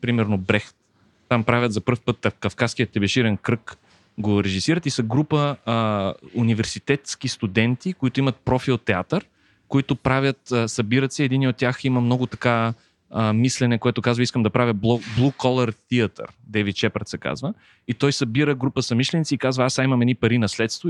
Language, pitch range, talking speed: Bulgarian, 110-130 Hz, 175 wpm